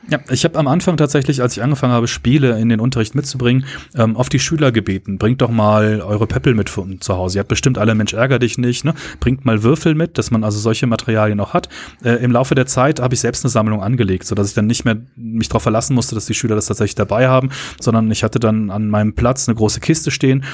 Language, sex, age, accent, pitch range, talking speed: German, male, 30-49, German, 110-140 Hz, 250 wpm